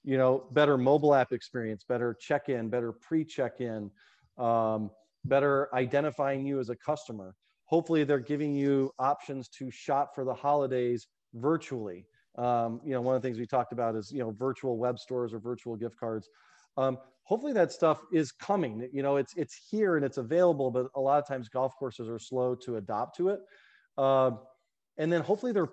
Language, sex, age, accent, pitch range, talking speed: English, male, 40-59, American, 125-145 Hz, 185 wpm